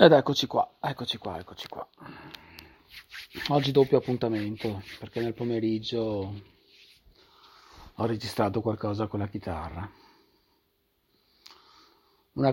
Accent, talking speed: native, 95 wpm